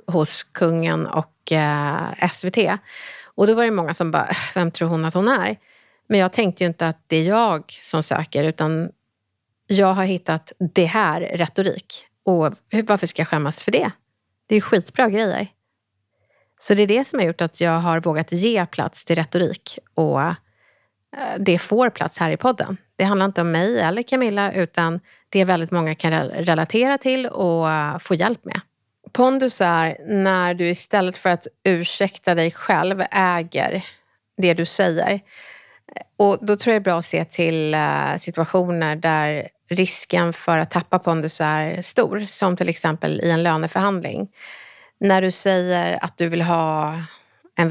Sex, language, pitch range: female, Swedish, 165-195 Hz